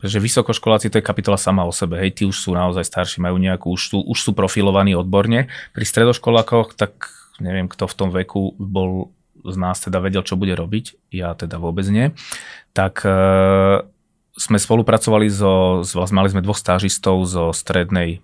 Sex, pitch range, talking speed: male, 95-105 Hz, 180 wpm